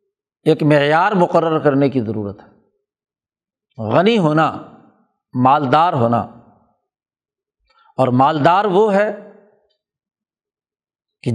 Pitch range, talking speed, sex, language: 150-205 Hz, 85 wpm, male, Urdu